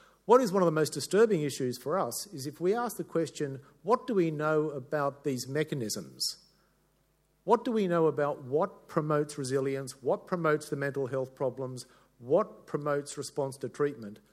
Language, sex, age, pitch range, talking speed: English, male, 50-69, 130-160 Hz, 175 wpm